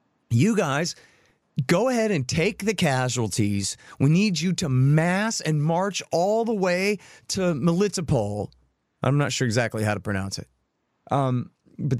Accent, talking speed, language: American, 150 wpm, English